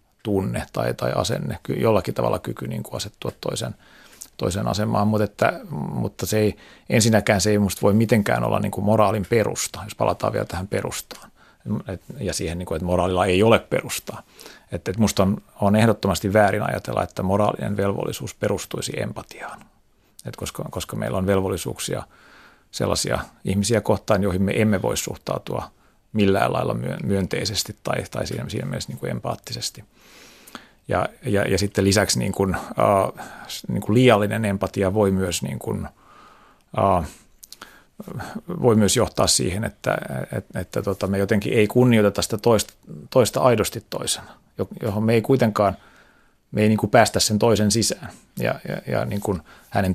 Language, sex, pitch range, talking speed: Finnish, male, 95-110 Hz, 155 wpm